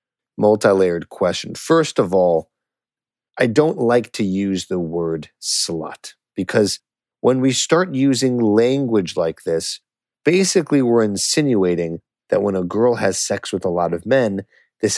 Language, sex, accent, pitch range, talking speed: English, male, American, 95-125 Hz, 145 wpm